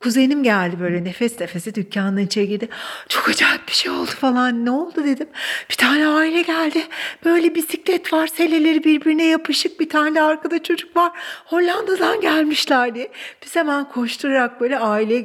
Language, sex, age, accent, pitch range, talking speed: Turkish, female, 60-79, native, 180-250 Hz, 155 wpm